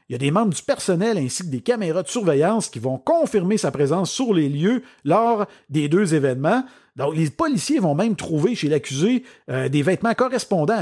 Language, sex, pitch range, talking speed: French, male, 145-225 Hz, 205 wpm